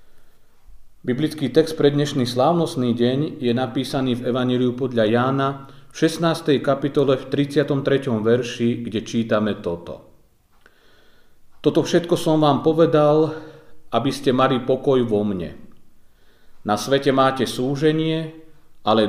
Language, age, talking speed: Slovak, 40-59, 115 wpm